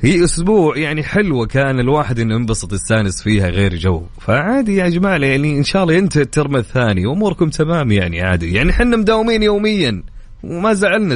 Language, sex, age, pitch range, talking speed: English, male, 30-49, 105-160 Hz, 160 wpm